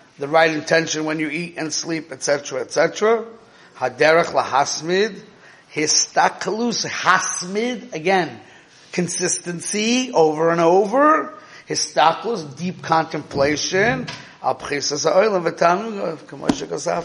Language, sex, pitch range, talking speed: English, male, 145-185 Hz, 85 wpm